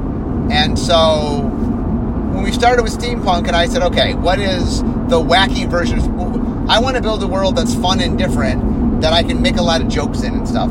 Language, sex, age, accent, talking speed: English, male, 30-49, American, 205 wpm